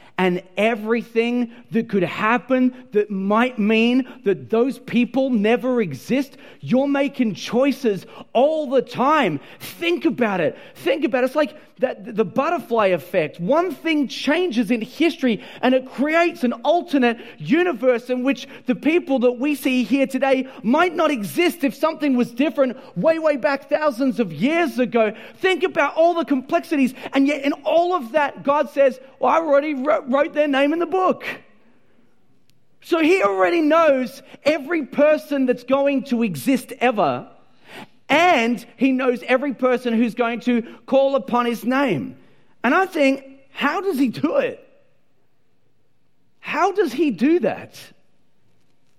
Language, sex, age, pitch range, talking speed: English, male, 30-49, 240-300 Hz, 150 wpm